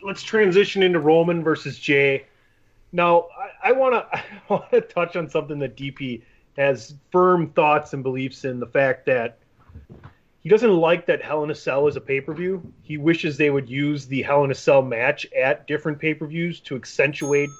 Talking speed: 175 wpm